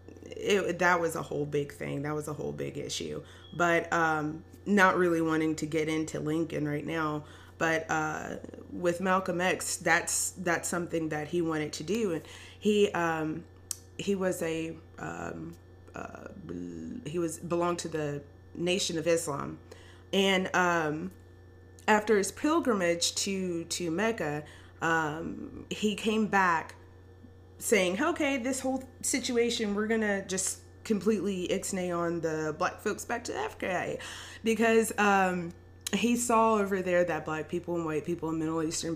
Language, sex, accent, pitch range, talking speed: English, female, American, 150-185 Hz, 150 wpm